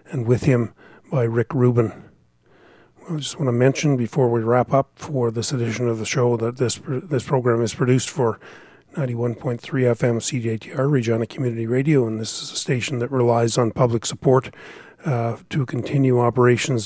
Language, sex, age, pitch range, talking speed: English, male, 40-59, 115-135 Hz, 170 wpm